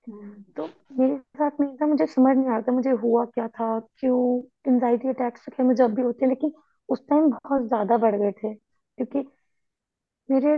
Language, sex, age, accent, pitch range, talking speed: Hindi, female, 20-39, native, 235-270 Hz, 165 wpm